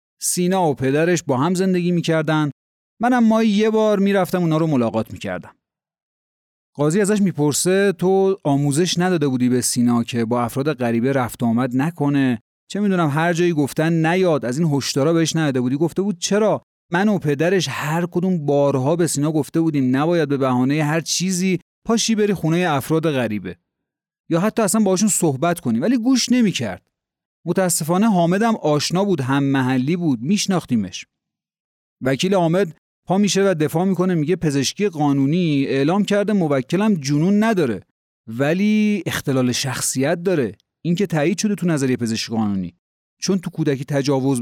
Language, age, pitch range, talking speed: Persian, 30-49, 135-185 Hz, 155 wpm